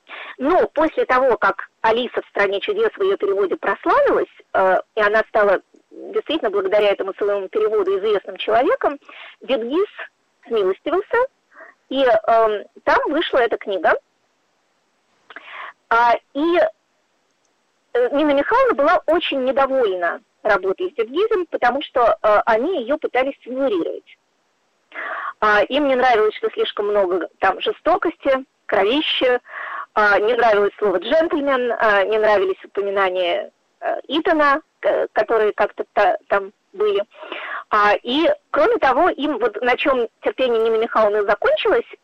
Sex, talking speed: female, 110 wpm